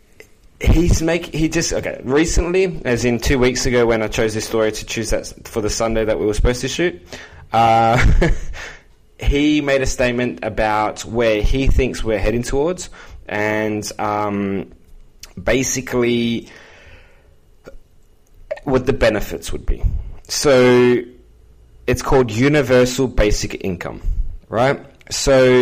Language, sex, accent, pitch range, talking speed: English, male, Australian, 105-130 Hz, 130 wpm